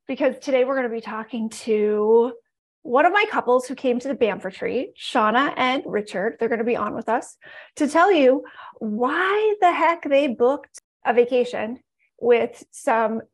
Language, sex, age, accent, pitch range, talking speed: English, female, 30-49, American, 235-290 Hz, 180 wpm